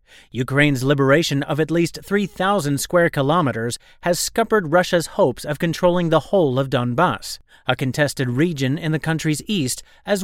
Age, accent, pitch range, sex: 30-49, American, 130-180 Hz, male